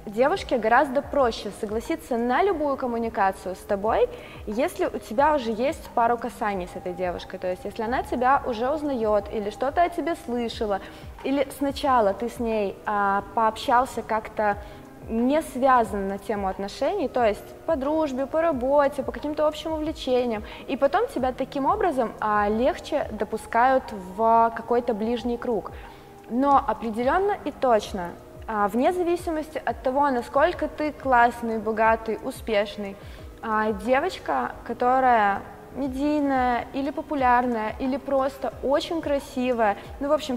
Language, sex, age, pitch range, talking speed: Russian, female, 20-39, 215-280 Hz, 130 wpm